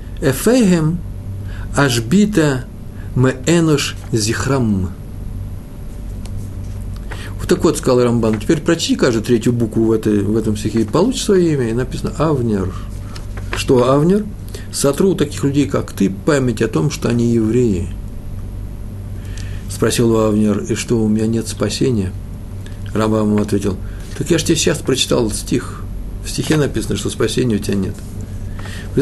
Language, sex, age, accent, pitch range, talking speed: Russian, male, 50-69, native, 100-120 Hz, 140 wpm